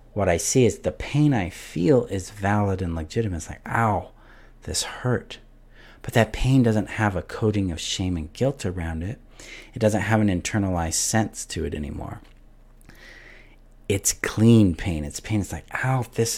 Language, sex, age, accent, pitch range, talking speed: English, male, 40-59, American, 95-120 Hz, 175 wpm